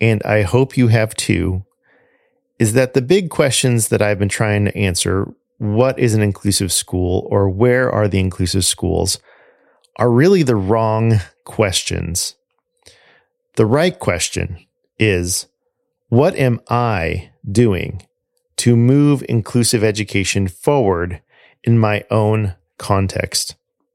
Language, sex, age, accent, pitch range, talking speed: English, male, 40-59, American, 100-130 Hz, 125 wpm